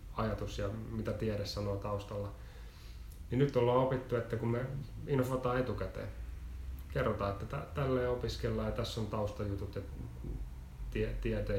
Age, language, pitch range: 30-49, Finnish, 100-115 Hz